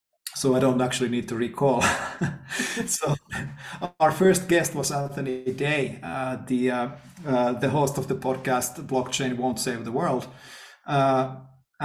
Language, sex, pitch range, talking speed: English, male, 125-140 Hz, 145 wpm